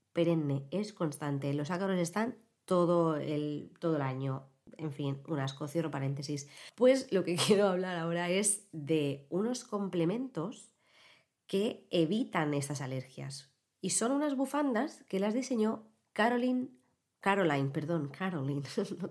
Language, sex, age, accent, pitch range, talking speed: Spanish, female, 20-39, Spanish, 150-215 Hz, 135 wpm